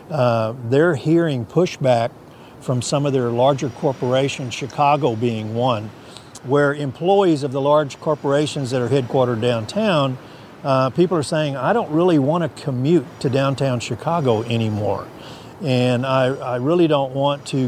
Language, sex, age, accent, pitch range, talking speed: English, male, 50-69, American, 125-145 Hz, 150 wpm